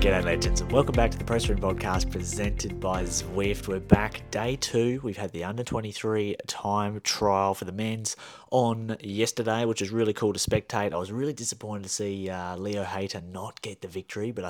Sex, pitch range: male, 90-110 Hz